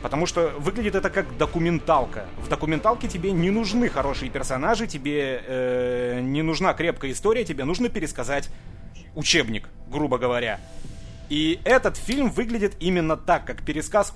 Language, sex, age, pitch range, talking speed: Russian, male, 30-49, 130-180 Hz, 140 wpm